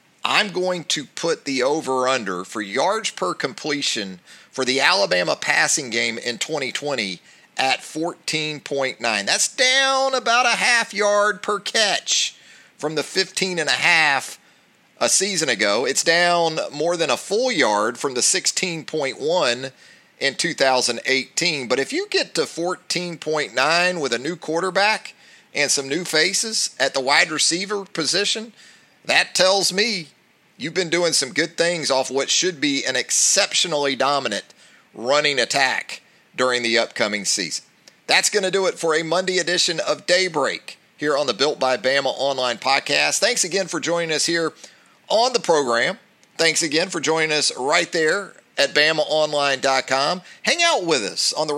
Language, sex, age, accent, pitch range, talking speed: English, male, 40-59, American, 135-190 Hz, 150 wpm